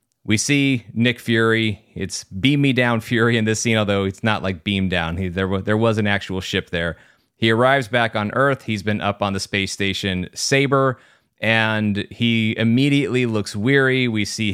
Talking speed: 180 wpm